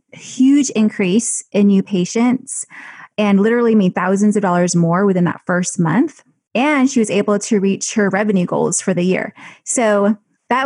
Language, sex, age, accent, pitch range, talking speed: English, female, 20-39, American, 195-240 Hz, 170 wpm